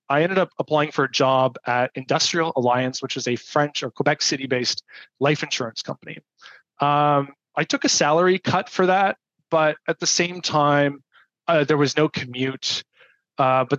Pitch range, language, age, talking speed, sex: 135-160 Hz, English, 20-39, 180 wpm, male